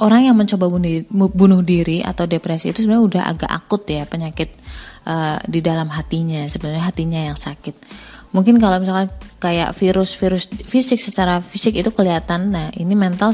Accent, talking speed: native, 160 wpm